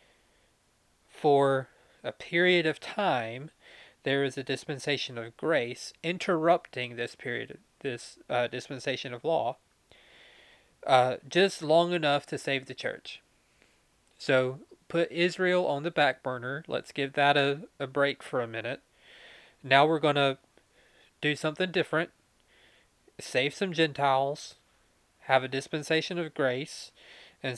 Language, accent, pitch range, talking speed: English, American, 130-155 Hz, 130 wpm